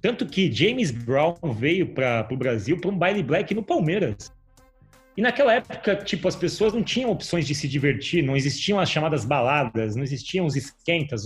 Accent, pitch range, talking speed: Brazilian, 140-205 Hz, 185 wpm